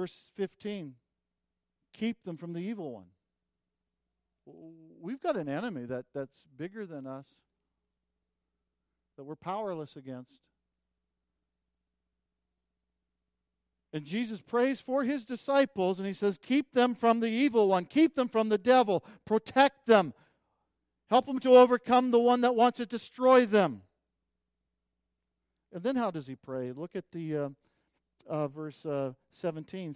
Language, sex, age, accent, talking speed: English, male, 50-69, American, 135 wpm